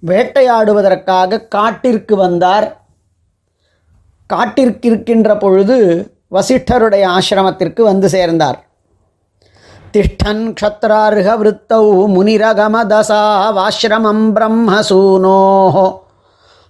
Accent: native